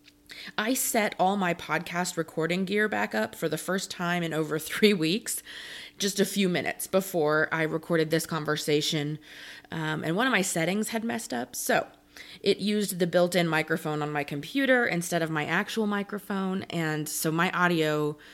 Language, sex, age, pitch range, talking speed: English, female, 20-39, 155-195 Hz, 175 wpm